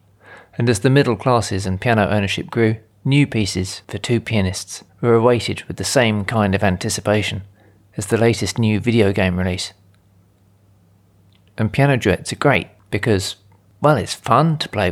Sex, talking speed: male, 160 wpm